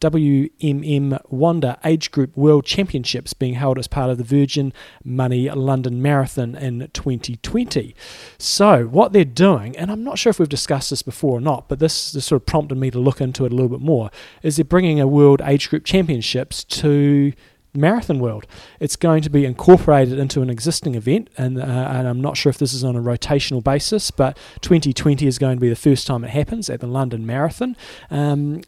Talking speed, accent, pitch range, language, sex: 205 wpm, Australian, 130-155 Hz, English, male